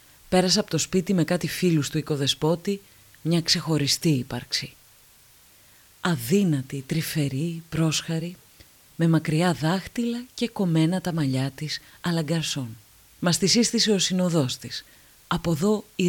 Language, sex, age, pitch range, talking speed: Greek, female, 30-49, 145-185 Hz, 125 wpm